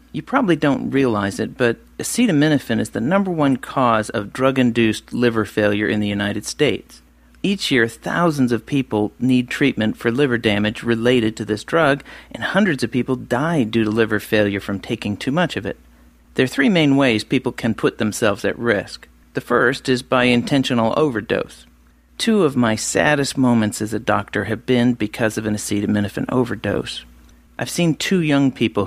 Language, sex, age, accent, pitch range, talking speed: English, male, 40-59, American, 105-130 Hz, 180 wpm